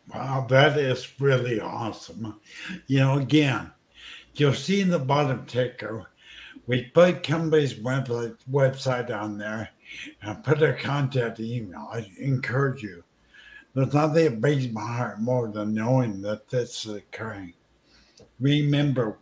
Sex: male